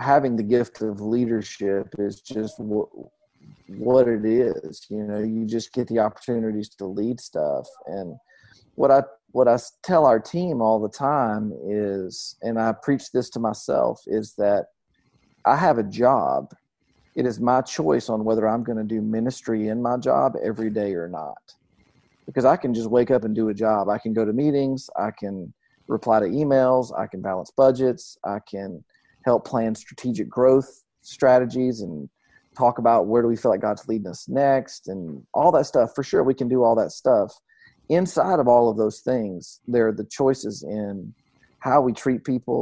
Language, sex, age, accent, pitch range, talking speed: English, male, 40-59, American, 105-125 Hz, 185 wpm